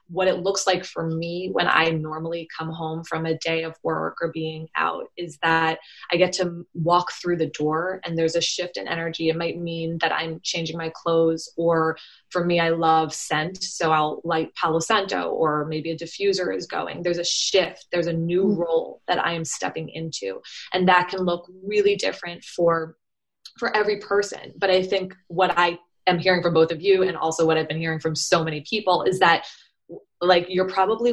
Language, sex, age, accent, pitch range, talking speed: English, female, 20-39, American, 165-195 Hz, 205 wpm